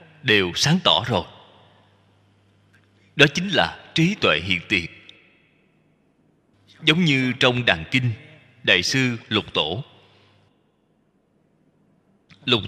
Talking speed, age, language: 100 wpm, 20-39, Vietnamese